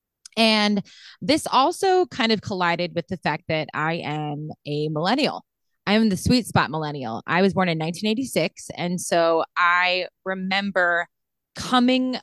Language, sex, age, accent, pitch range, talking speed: English, female, 20-39, American, 165-200 Hz, 145 wpm